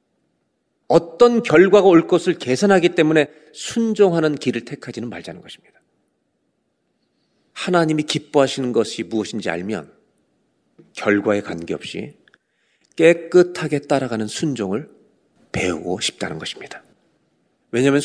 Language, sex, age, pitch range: Korean, male, 40-59, 125-175 Hz